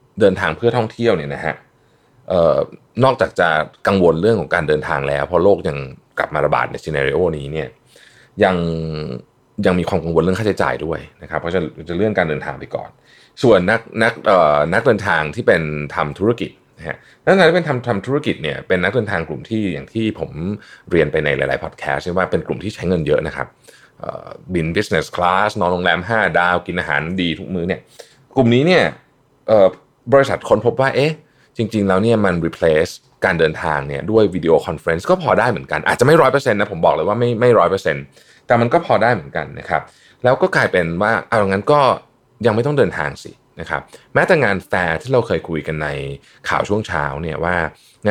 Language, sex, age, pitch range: Thai, male, 20-39, 80-120 Hz